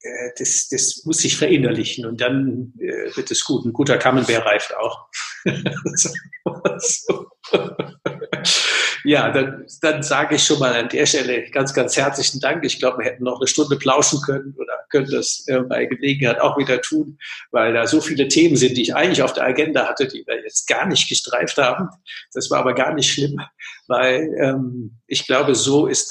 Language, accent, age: German, German, 60-79